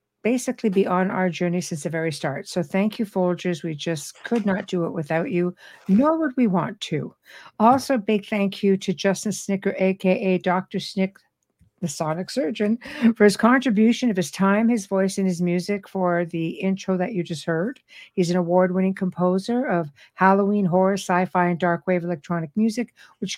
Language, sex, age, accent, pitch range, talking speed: English, female, 60-79, American, 180-220 Hz, 180 wpm